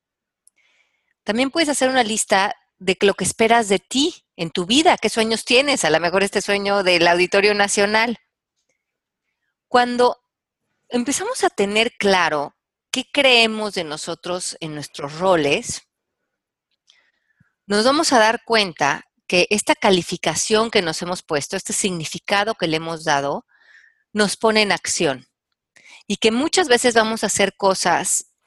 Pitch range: 185-240 Hz